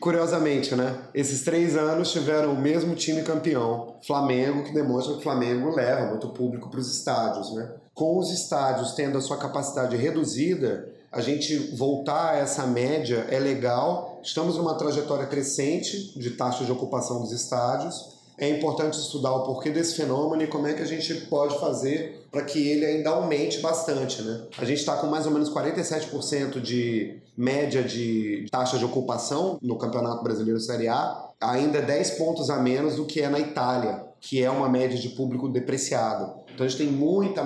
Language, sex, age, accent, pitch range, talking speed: Portuguese, male, 30-49, Brazilian, 125-155 Hz, 180 wpm